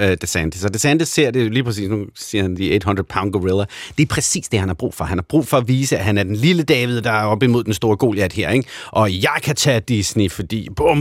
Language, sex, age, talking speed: Danish, male, 30-49, 275 wpm